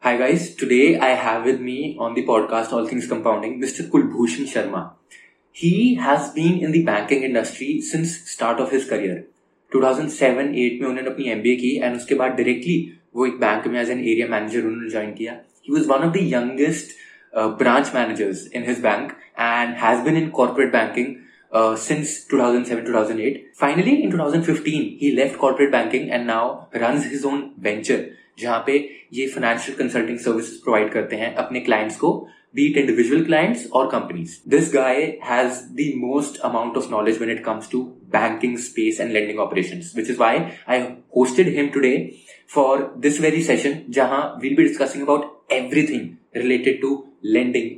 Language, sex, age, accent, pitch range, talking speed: English, male, 20-39, Indian, 120-155 Hz, 160 wpm